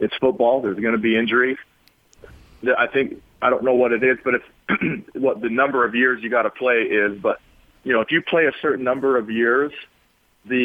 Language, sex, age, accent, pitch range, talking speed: English, male, 40-59, American, 115-145 Hz, 220 wpm